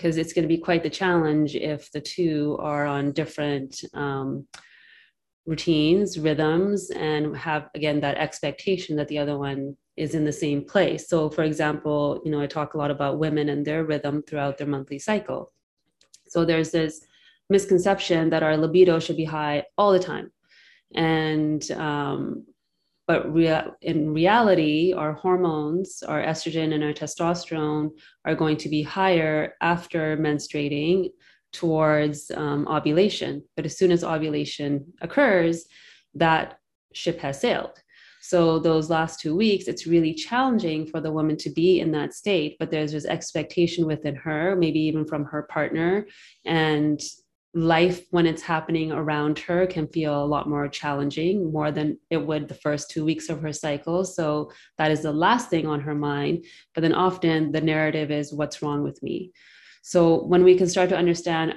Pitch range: 150-170 Hz